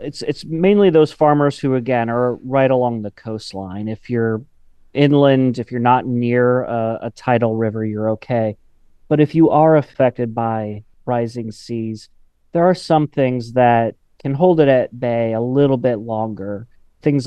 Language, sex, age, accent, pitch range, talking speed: English, male, 30-49, American, 110-130 Hz, 165 wpm